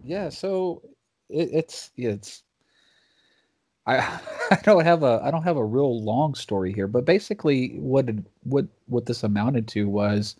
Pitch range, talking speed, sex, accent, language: 100-125 Hz, 160 wpm, male, American, English